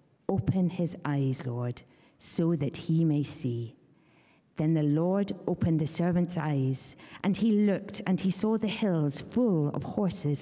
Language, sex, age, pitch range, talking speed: English, female, 50-69, 135-180 Hz, 155 wpm